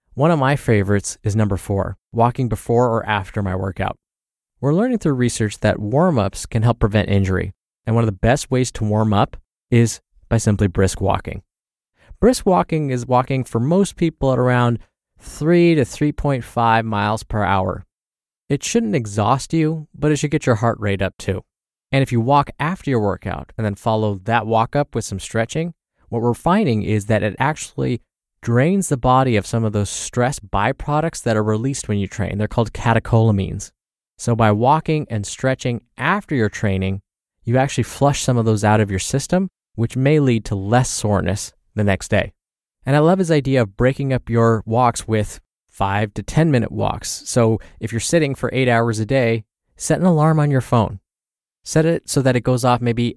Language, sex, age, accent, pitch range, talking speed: English, male, 20-39, American, 105-135 Hz, 195 wpm